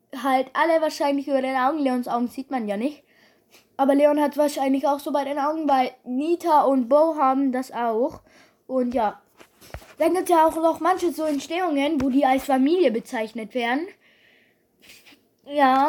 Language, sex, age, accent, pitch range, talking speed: German, female, 20-39, German, 255-325 Hz, 170 wpm